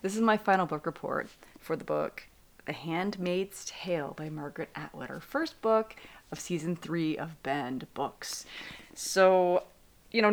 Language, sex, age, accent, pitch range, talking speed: English, female, 30-49, American, 160-210 Hz, 155 wpm